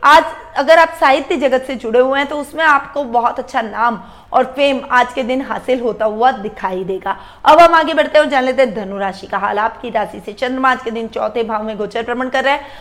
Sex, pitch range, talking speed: female, 235-285 Hz, 95 wpm